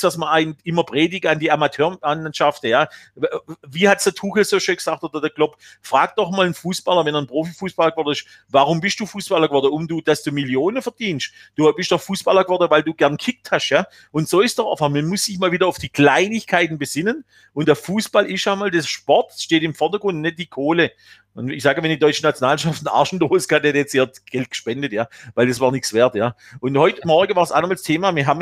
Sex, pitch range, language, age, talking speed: male, 145-180 Hz, German, 40-59, 235 wpm